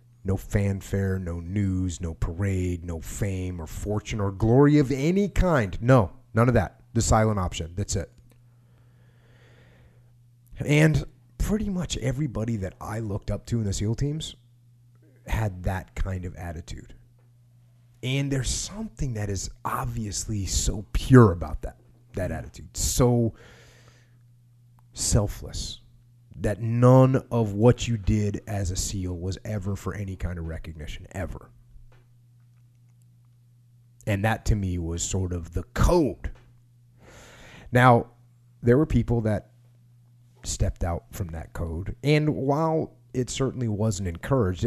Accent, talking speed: American, 130 wpm